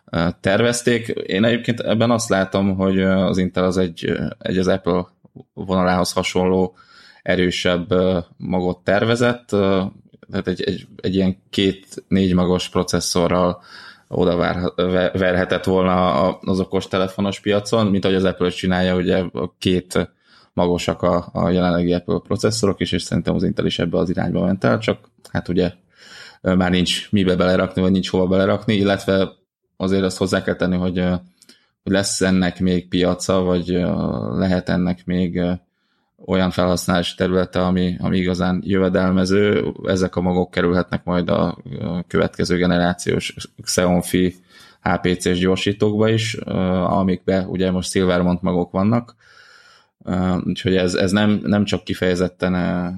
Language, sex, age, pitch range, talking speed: Hungarian, male, 20-39, 90-95 Hz, 135 wpm